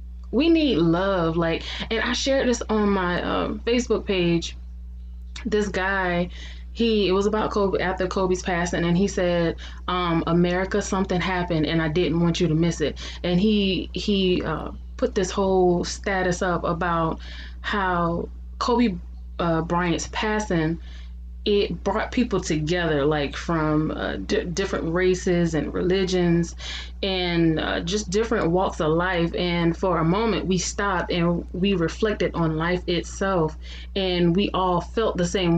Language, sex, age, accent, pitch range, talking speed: English, female, 20-39, American, 160-195 Hz, 150 wpm